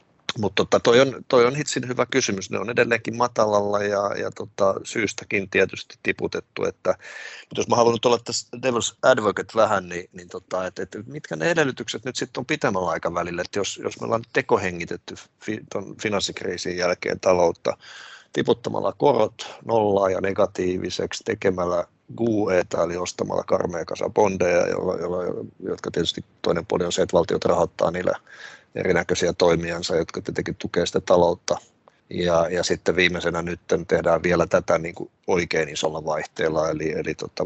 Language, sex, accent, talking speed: Finnish, male, native, 155 wpm